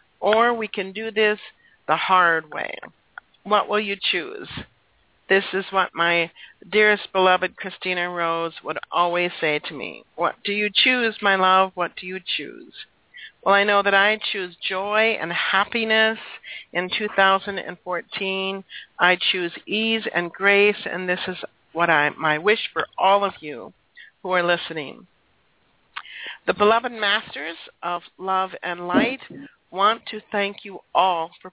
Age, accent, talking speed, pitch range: 60-79, American, 150 wpm, 175-210 Hz